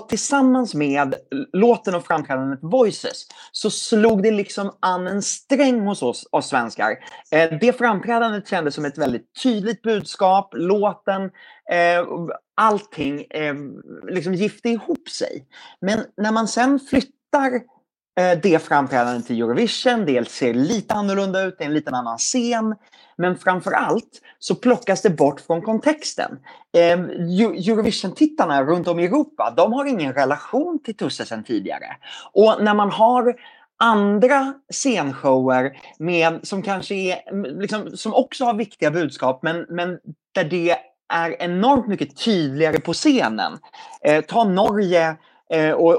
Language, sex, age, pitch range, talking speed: Swedish, male, 30-49, 165-225 Hz, 135 wpm